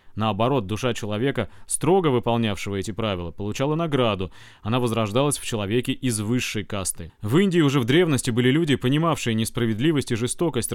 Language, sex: Russian, male